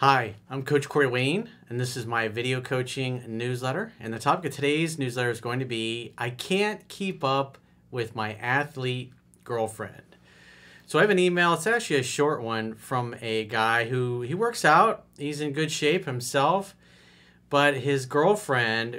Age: 40-59